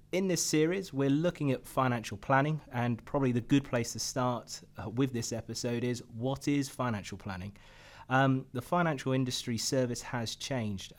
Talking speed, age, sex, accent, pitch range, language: 170 wpm, 30-49, male, British, 110-135 Hz, English